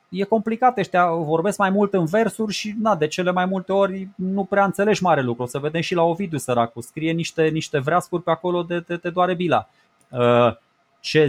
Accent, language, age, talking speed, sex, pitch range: native, Romanian, 20-39, 200 wpm, male, 135-180 Hz